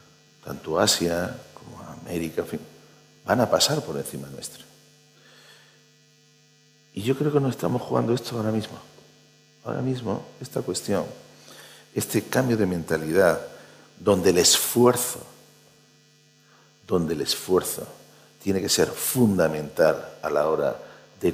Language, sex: Spanish, male